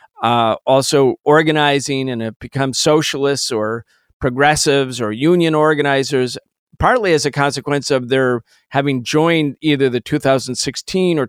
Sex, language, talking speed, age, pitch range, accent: male, English, 130 wpm, 40-59, 125-160 Hz, American